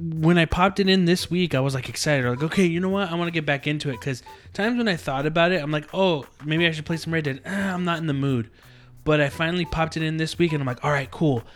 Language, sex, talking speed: English, male, 315 wpm